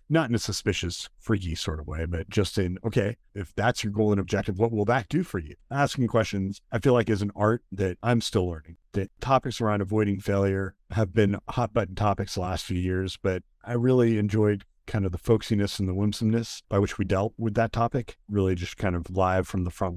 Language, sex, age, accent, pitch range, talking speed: English, male, 40-59, American, 95-110 Hz, 225 wpm